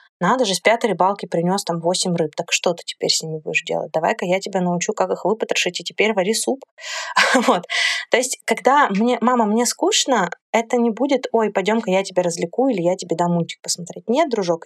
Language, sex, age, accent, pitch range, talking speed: Russian, female, 20-39, native, 180-230 Hz, 215 wpm